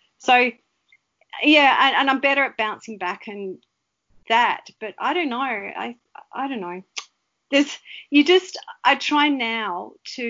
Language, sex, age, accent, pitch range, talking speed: English, female, 40-59, Australian, 195-240 Hz, 155 wpm